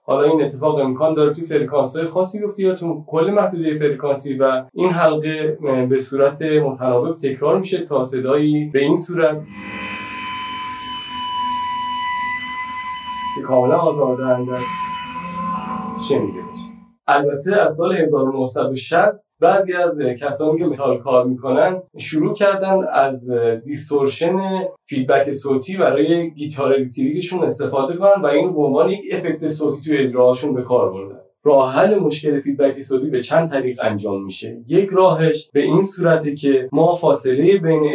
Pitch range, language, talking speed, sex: 135-175 Hz, Persian, 135 wpm, male